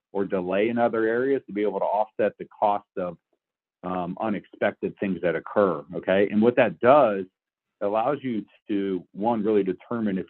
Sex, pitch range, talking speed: male, 90-120 Hz, 180 wpm